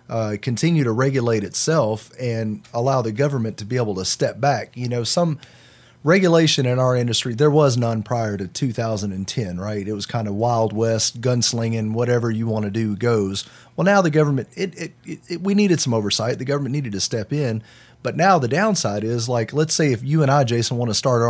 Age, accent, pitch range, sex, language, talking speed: 30-49, American, 110-145 Hz, male, English, 215 wpm